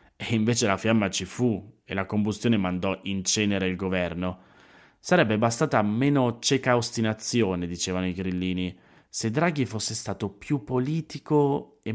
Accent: native